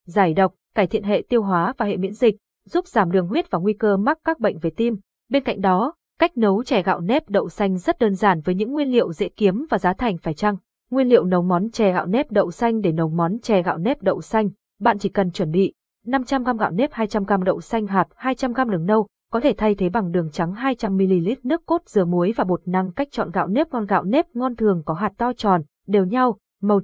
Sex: female